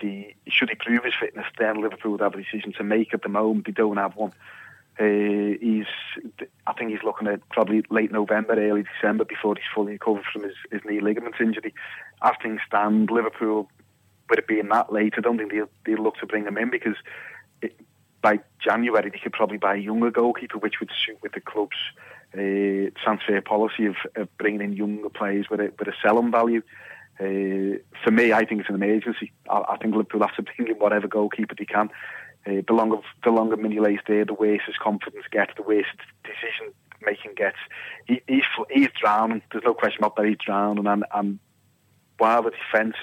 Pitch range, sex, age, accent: 105-110 Hz, male, 30-49, British